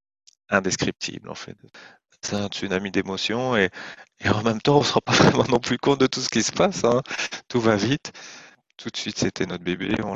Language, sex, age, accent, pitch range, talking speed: French, male, 40-59, French, 95-110 Hz, 220 wpm